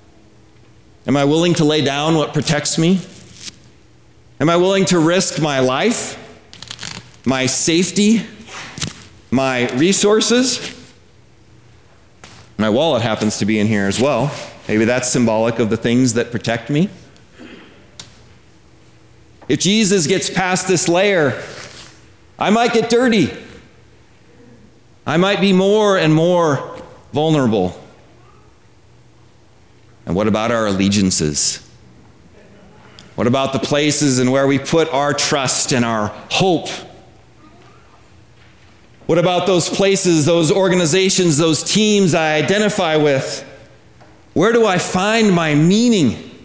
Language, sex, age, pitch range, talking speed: English, male, 40-59, 125-190 Hz, 115 wpm